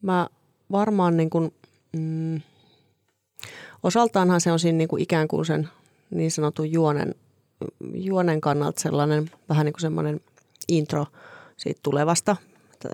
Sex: female